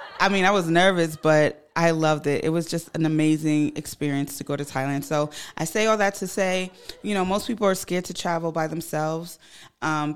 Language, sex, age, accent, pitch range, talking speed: English, female, 20-39, American, 150-180 Hz, 220 wpm